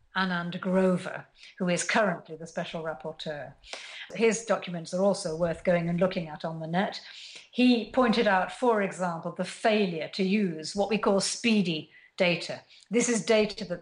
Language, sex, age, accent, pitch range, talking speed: English, female, 50-69, British, 175-210 Hz, 165 wpm